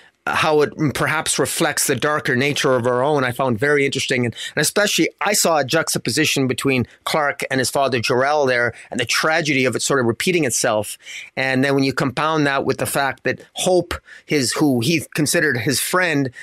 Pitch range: 130-170 Hz